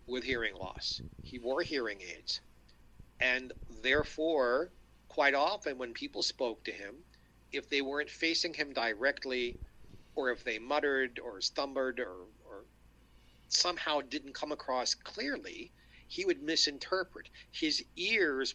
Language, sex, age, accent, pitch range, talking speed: English, male, 50-69, American, 120-185 Hz, 130 wpm